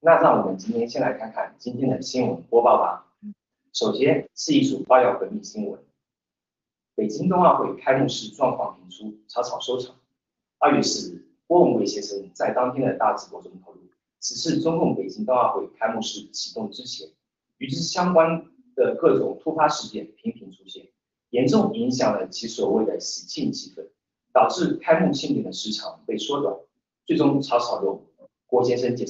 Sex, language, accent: male, Chinese, native